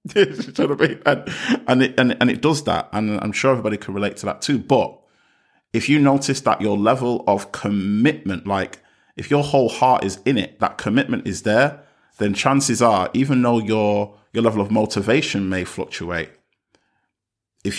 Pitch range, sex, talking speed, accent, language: 100-120 Hz, male, 170 wpm, British, English